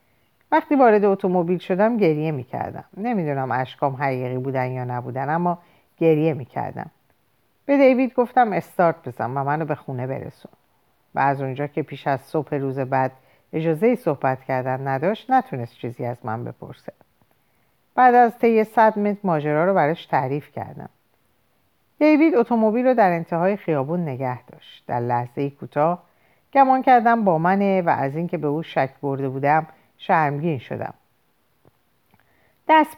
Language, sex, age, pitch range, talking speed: Persian, female, 50-69, 135-195 Hz, 145 wpm